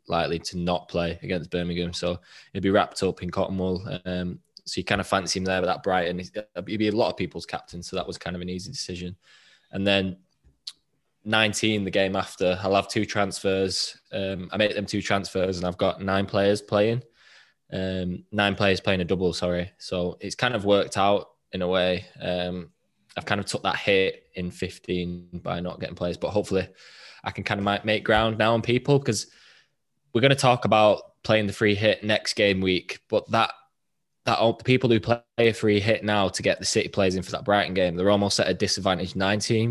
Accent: British